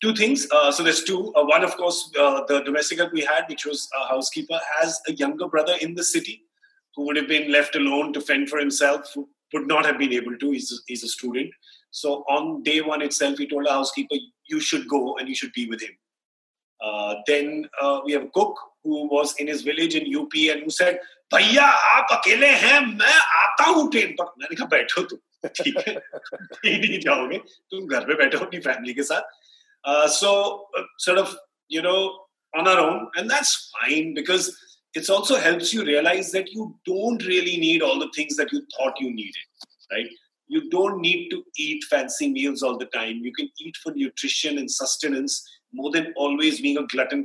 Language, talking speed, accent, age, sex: Hindi, 210 wpm, native, 30-49, male